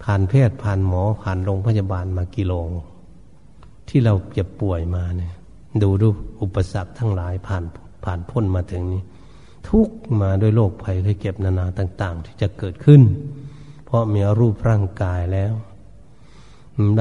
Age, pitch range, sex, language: 60-79, 95-130 Hz, male, Thai